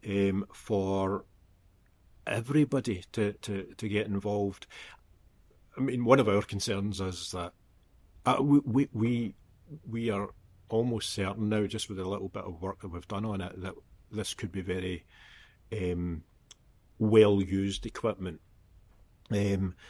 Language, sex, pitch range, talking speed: English, male, 95-110 Hz, 140 wpm